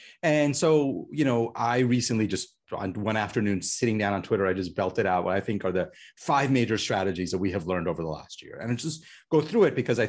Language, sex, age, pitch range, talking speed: English, male, 30-49, 95-130 Hz, 250 wpm